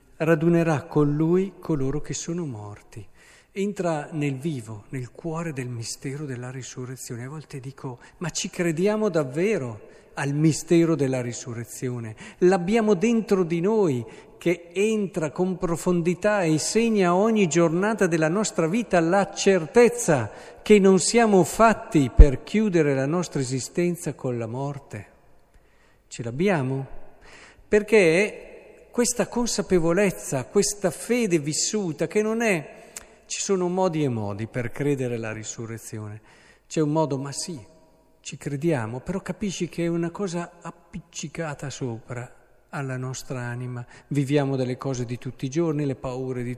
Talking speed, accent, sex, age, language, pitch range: 135 wpm, native, male, 50-69, Italian, 130-195 Hz